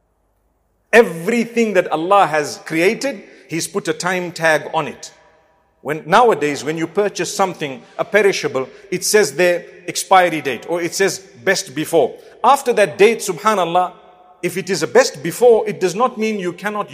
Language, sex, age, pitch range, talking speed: English, male, 50-69, 170-230 Hz, 165 wpm